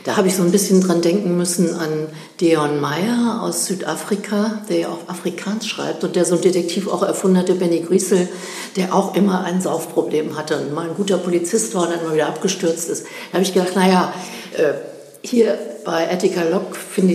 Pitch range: 165-195 Hz